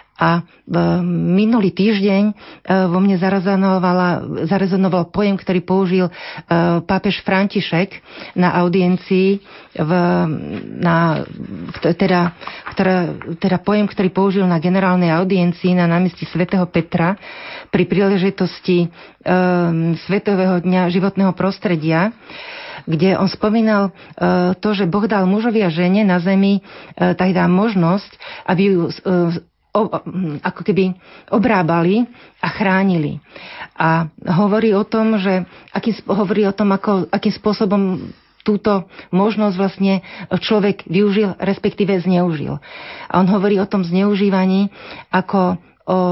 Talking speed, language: 120 wpm, Slovak